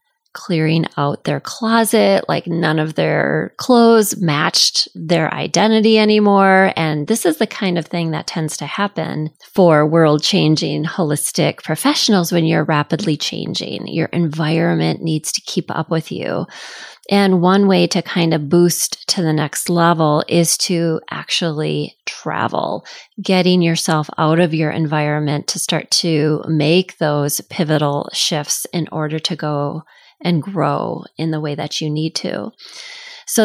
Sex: female